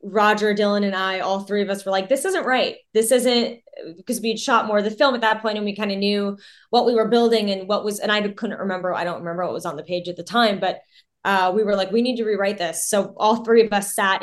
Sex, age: female, 20-39